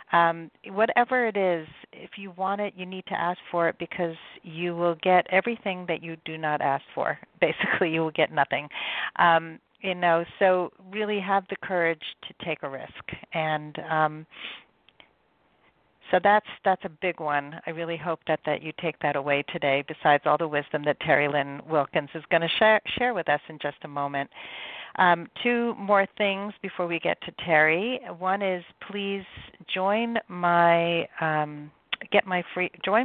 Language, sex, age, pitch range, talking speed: English, female, 40-59, 155-190 Hz, 180 wpm